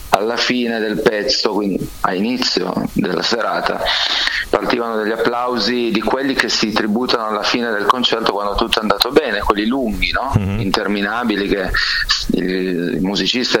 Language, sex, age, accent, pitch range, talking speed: Italian, male, 40-59, native, 105-120 Hz, 140 wpm